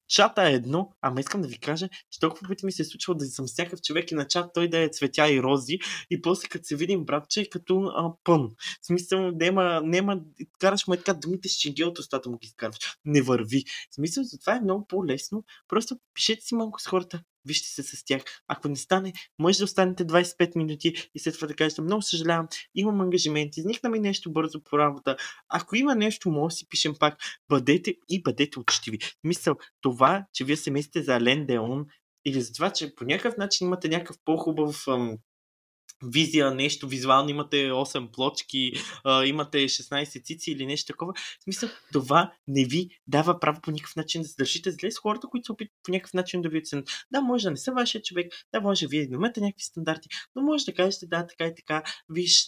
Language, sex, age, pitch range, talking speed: Bulgarian, male, 20-39, 145-185 Hz, 210 wpm